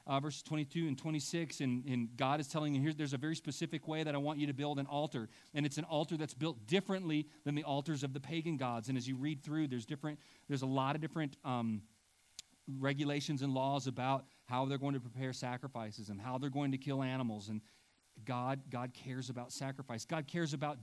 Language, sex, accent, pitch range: English, male, American, 125-155 Hz